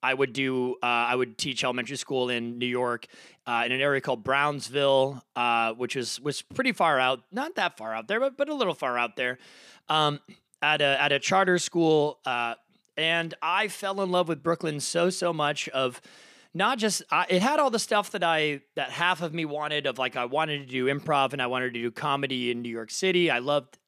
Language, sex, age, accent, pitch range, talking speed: English, male, 30-49, American, 135-175 Hz, 225 wpm